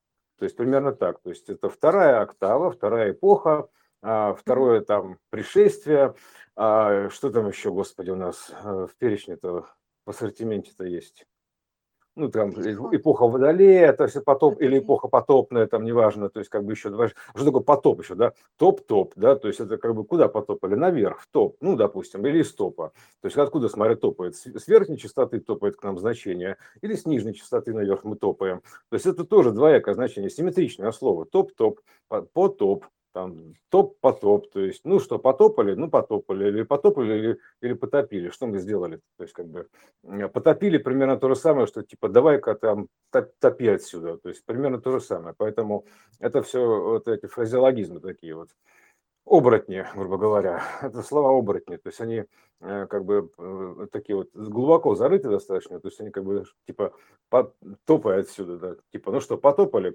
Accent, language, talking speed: native, Russian, 165 wpm